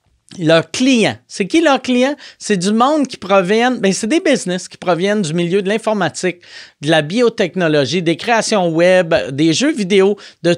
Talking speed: 175 wpm